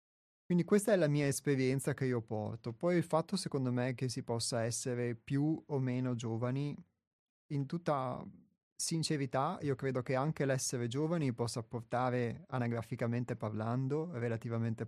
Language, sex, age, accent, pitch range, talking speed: Italian, male, 30-49, native, 120-140 Hz, 145 wpm